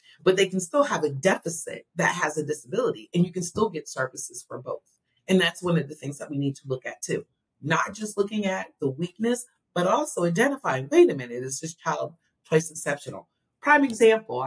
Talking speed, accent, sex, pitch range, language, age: 210 wpm, American, female, 150-250 Hz, English, 40-59